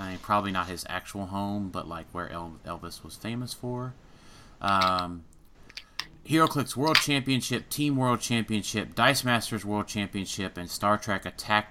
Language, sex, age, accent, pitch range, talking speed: English, male, 30-49, American, 90-115 Hz, 150 wpm